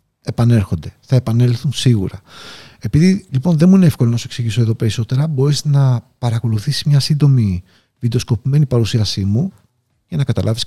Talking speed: 145 wpm